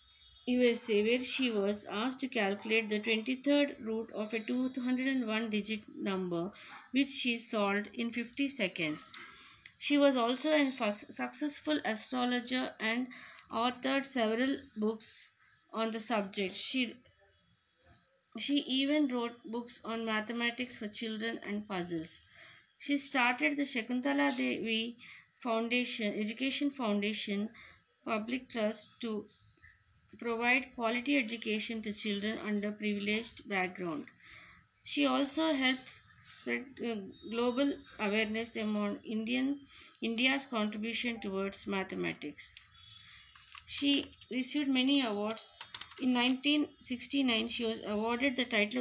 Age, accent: 20-39, native